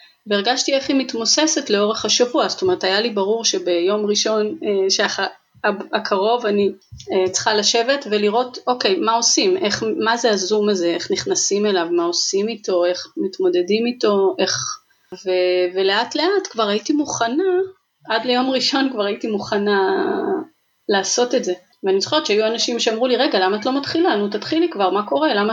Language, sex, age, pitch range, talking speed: Hebrew, female, 30-49, 205-270 Hz, 165 wpm